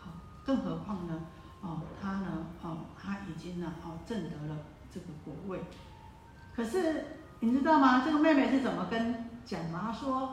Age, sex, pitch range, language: 50-69, female, 195-255 Hz, Chinese